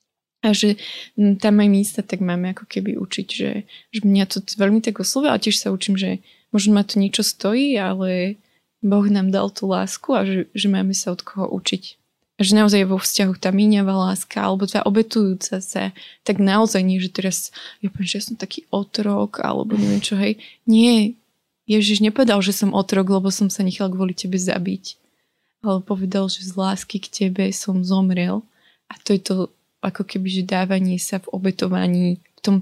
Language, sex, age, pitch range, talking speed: Slovak, female, 20-39, 190-210 Hz, 195 wpm